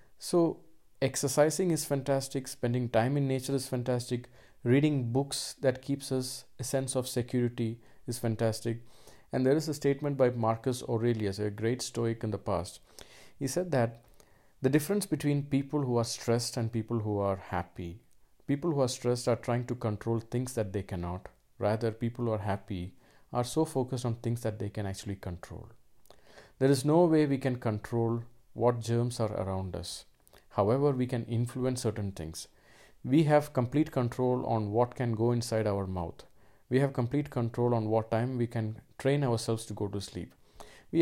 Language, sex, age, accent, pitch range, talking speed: English, male, 50-69, Indian, 110-135 Hz, 180 wpm